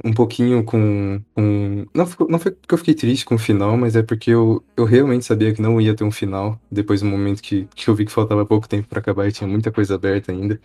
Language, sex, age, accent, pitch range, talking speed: Portuguese, male, 20-39, Brazilian, 100-115 Hz, 260 wpm